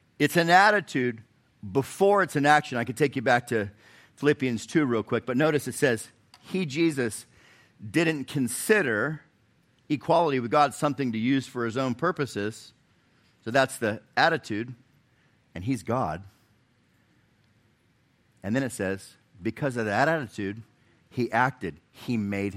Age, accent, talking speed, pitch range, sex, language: 50-69, American, 145 wpm, 105-140 Hz, male, English